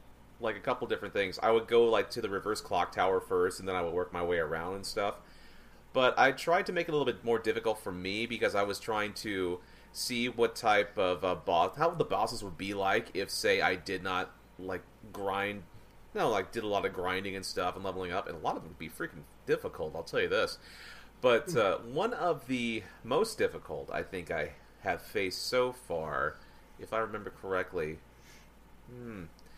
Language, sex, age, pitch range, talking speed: English, male, 30-49, 100-125 Hz, 215 wpm